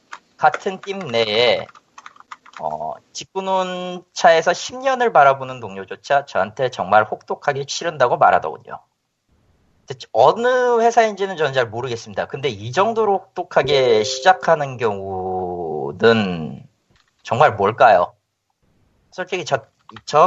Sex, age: male, 40-59